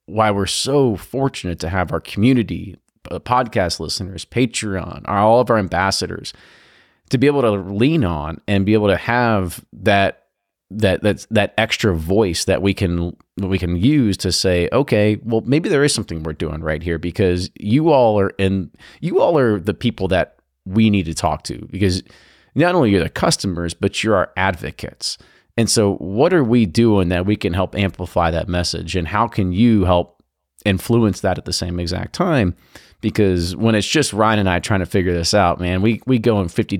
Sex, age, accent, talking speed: male, 30-49, American, 195 wpm